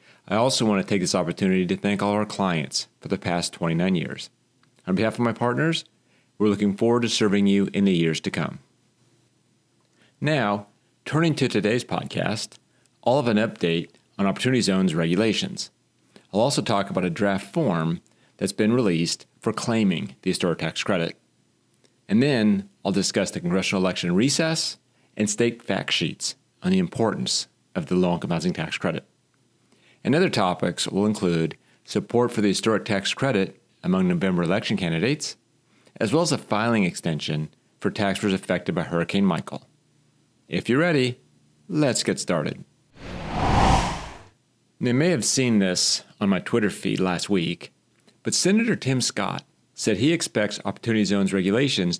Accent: American